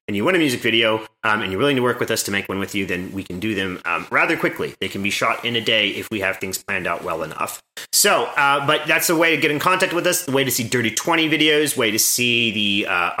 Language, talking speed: English, 300 wpm